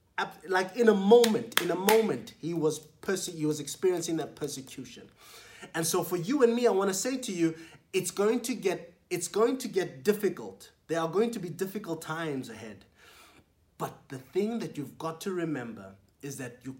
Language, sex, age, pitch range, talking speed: English, male, 20-39, 135-190 Hz, 195 wpm